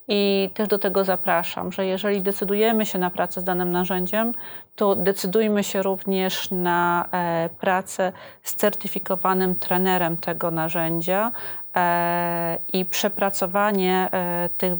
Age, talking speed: 30-49, 115 wpm